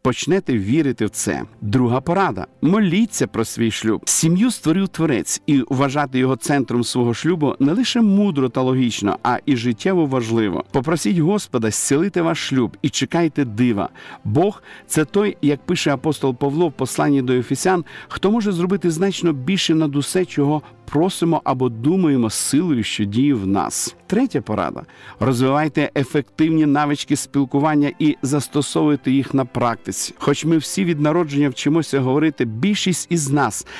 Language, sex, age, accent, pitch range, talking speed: Ukrainian, male, 50-69, native, 130-165 Hz, 155 wpm